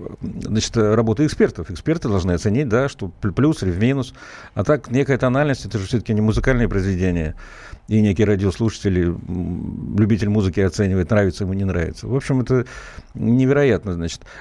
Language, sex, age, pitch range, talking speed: Russian, male, 60-79, 100-130 Hz, 155 wpm